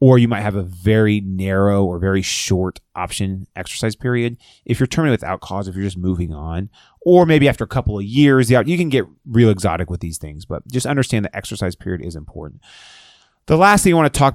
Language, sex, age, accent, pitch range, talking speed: English, male, 30-49, American, 95-125 Hz, 220 wpm